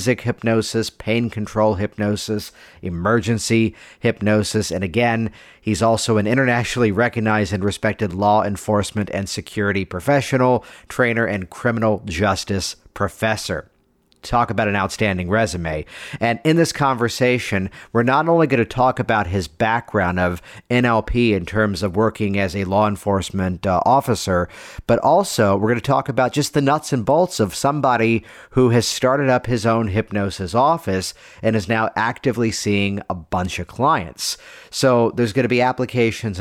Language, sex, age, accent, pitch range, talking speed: English, male, 50-69, American, 100-125 Hz, 150 wpm